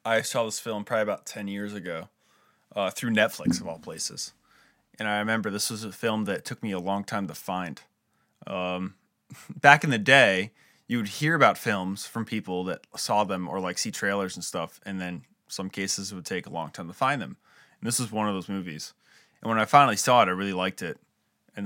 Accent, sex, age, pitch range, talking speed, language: American, male, 20-39, 95-110 Hz, 225 wpm, English